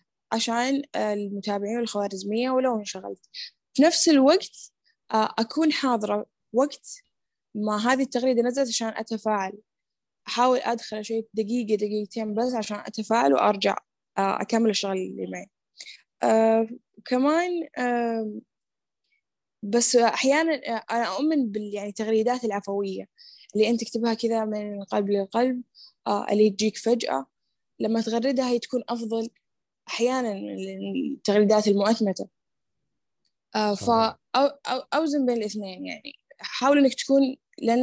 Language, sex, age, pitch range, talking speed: Arabic, female, 10-29, 210-260 Hz, 100 wpm